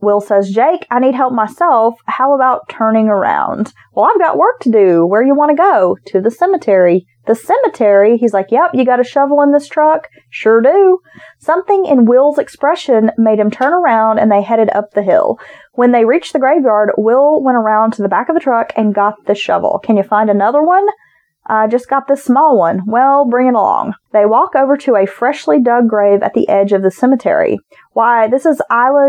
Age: 30-49